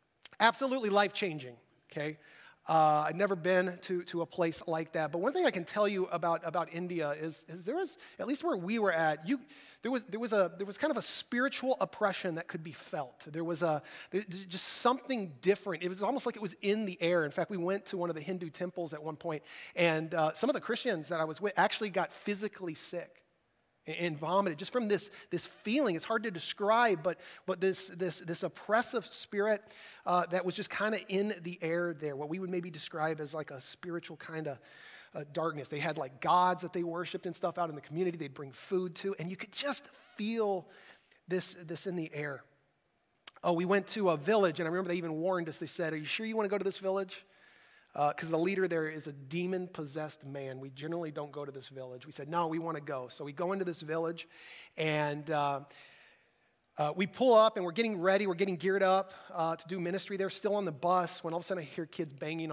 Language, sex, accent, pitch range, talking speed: English, male, American, 155-195 Hz, 235 wpm